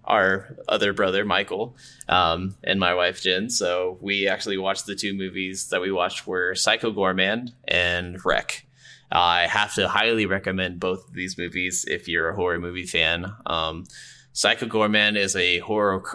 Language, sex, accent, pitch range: English, male, American, 90-105 Hz